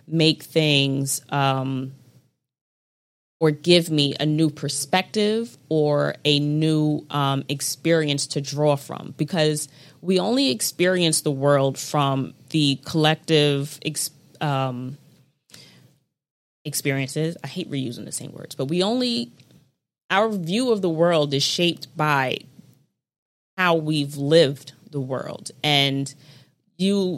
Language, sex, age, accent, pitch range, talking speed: English, female, 20-39, American, 140-170 Hz, 115 wpm